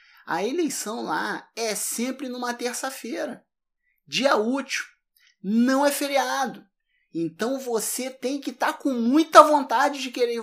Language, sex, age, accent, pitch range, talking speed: Portuguese, male, 20-39, Brazilian, 195-270 Hz, 125 wpm